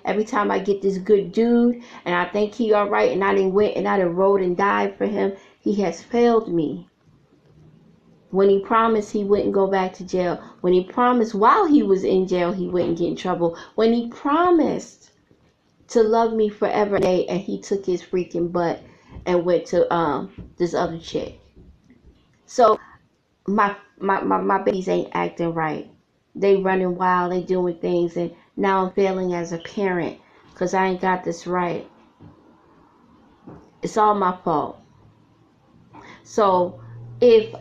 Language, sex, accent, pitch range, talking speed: English, female, American, 175-210 Hz, 165 wpm